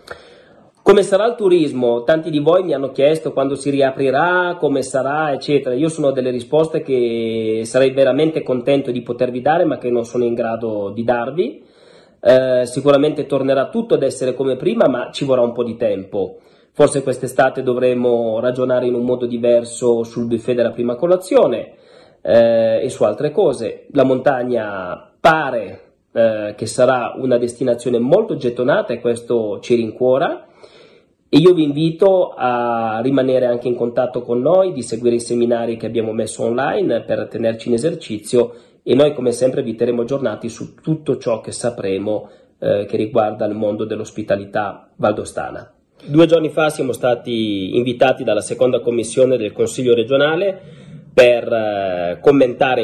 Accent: native